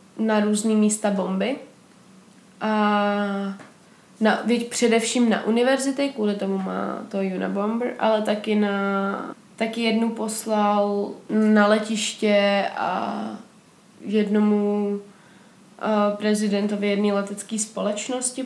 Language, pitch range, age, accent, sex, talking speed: Czech, 205-225 Hz, 20-39, native, female, 95 wpm